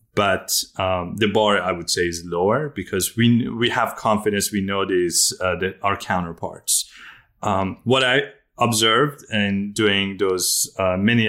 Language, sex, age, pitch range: English, male, 30-49, 90-110 Hz